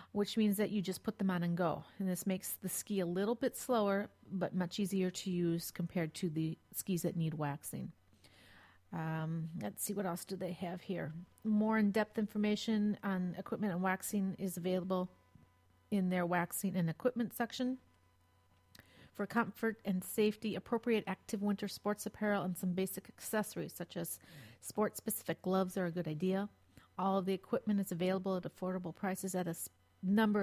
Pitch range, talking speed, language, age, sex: 170-205 Hz, 180 wpm, English, 40-59, female